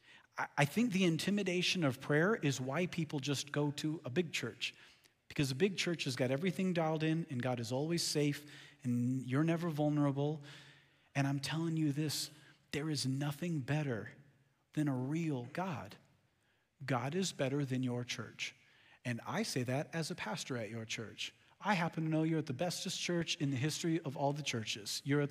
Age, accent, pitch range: 40-59, American, 125-160 Hz